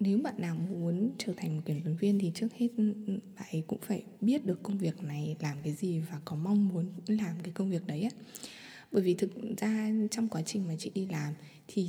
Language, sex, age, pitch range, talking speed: Vietnamese, female, 20-39, 165-210 Hz, 225 wpm